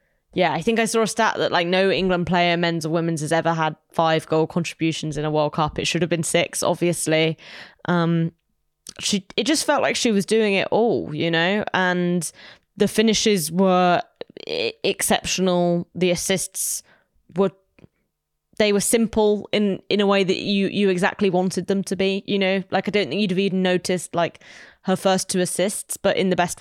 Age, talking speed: 10-29, 190 wpm